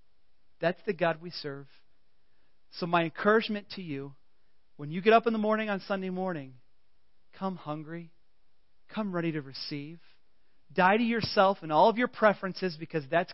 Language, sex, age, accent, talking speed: English, male, 40-59, American, 160 wpm